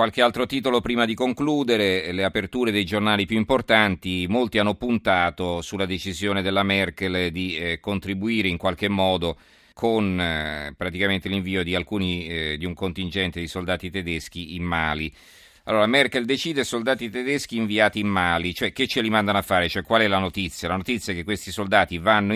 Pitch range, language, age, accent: 90-110 Hz, Italian, 40-59, native